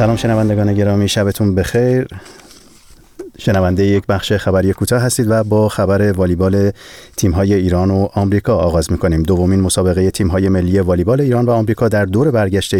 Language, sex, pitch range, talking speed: Persian, male, 90-105 Hz, 165 wpm